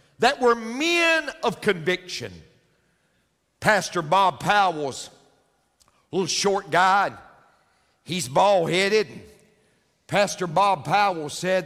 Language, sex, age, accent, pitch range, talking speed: English, male, 50-69, American, 195-260 Hz, 85 wpm